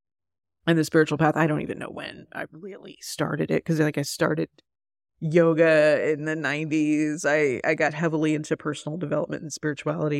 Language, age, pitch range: English, 30-49, 145-165 Hz